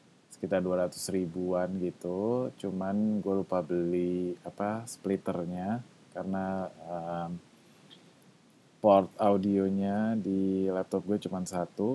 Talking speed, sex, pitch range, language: 95 wpm, male, 90-105 Hz, Indonesian